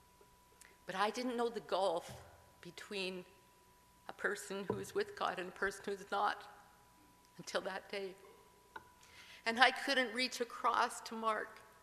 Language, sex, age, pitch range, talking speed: English, female, 50-69, 185-230 Hz, 145 wpm